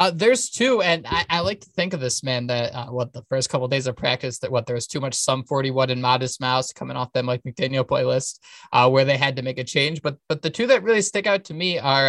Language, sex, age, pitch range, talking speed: English, male, 20-39, 135-180 Hz, 290 wpm